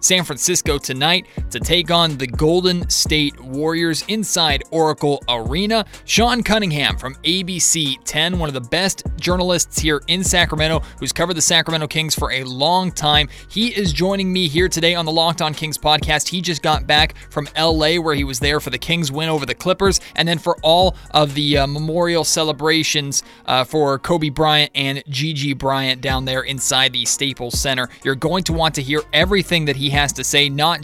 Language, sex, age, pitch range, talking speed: English, male, 20-39, 140-175 Hz, 195 wpm